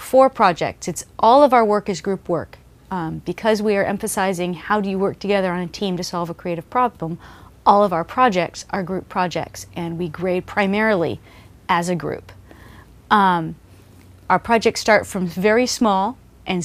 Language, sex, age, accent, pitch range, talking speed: English, female, 40-59, American, 165-205 Hz, 180 wpm